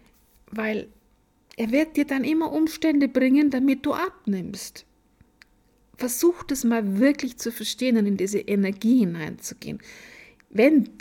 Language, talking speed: German, 125 wpm